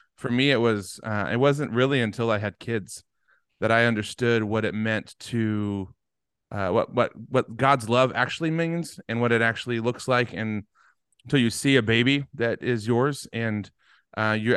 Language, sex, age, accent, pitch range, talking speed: English, male, 30-49, American, 110-130 Hz, 185 wpm